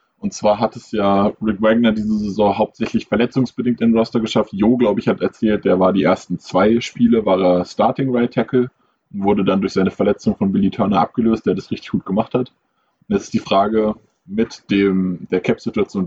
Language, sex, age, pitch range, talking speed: German, male, 20-39, 95-125 Hz, 200 wpm